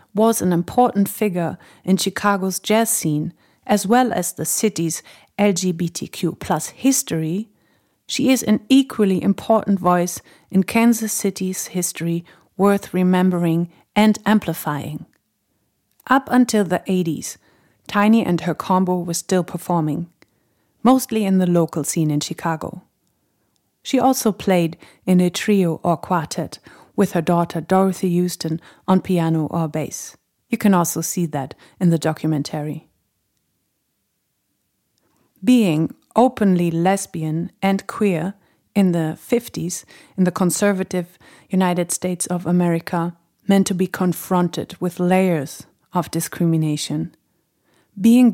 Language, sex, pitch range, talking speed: English, female, 170-205 Hz, 120 wpm